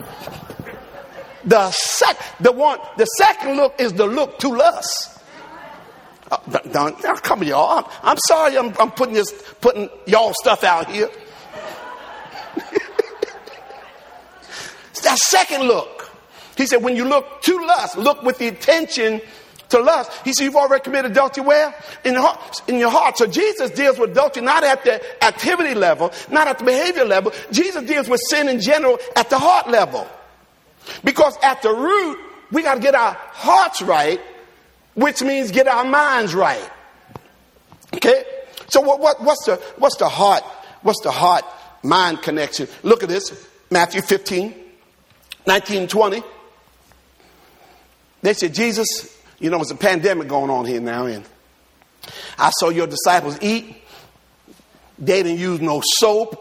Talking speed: 150 wpm